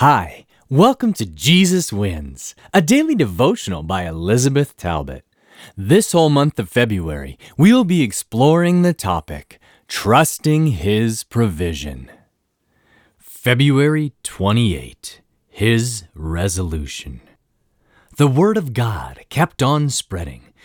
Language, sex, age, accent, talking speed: English, male, 30-49, American, 105 wpm